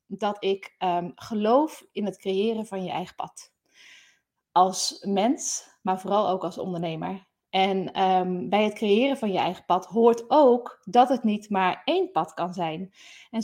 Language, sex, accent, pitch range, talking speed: Dutch, female, Dutch, 180-225 Hz, 160 wpm